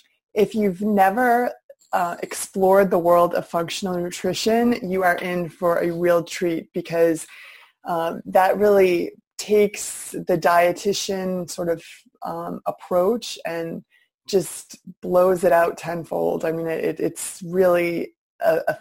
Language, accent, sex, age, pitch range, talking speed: English, American, female, 20-39, 170-205 Hz, 130 wpm